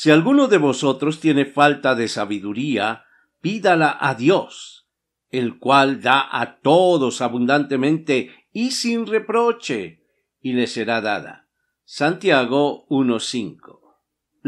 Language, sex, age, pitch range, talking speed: Spanish, male, 50-69, 120-155 Hz, 110 wpm